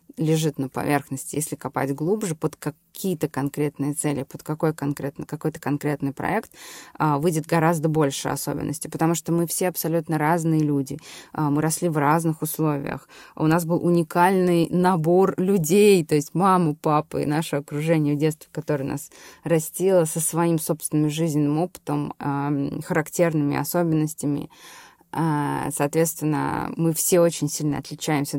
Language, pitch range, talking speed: Russian, 145-165 Hz, 130 wpm